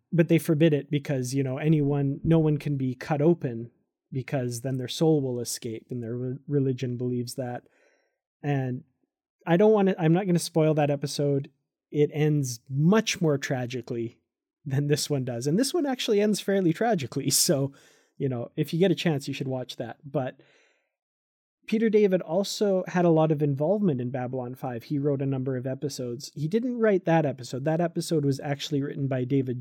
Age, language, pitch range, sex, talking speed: 30-49, English, 130-170 Hz, male, 195 wpm